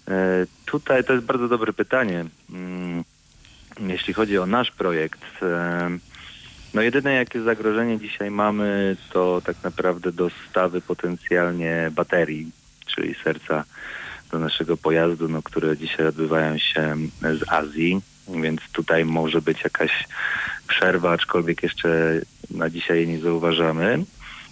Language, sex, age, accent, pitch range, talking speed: Polish, male, 30-49, native, 80-95 Hz, 115 wpm